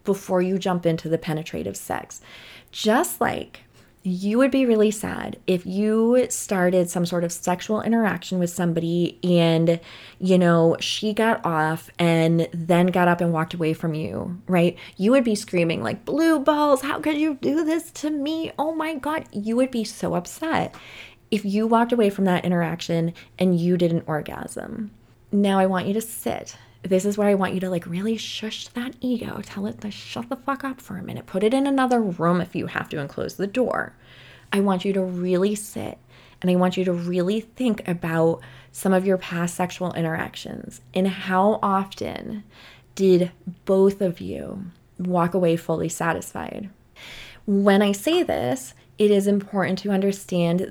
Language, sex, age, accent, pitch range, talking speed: English, female, 20-39, American, 175-215 Hz, 185 wpm